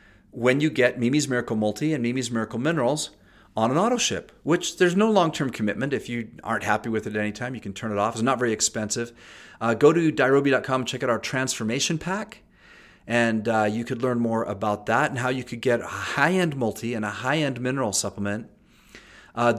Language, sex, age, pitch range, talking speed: English, male, 40-59, 105-125 Hz, 210 wpm